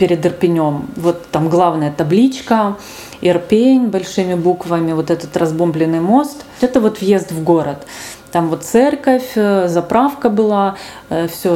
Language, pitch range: Russian, 165-200 Hz